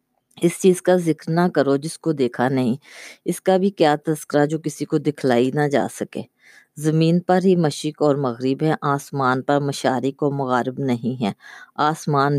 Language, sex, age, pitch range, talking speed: Urdu, female, 20-39, 130-155 Hz, 180 wpm